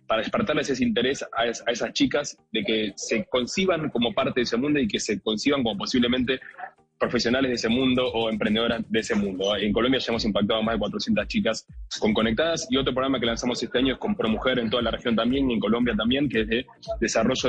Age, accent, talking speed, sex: 20-39, Argentinian, 225 wpm, male